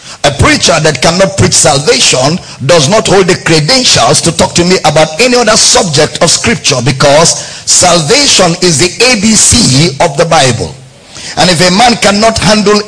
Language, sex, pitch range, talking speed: English, male, 150-210 Hz, 165 wpm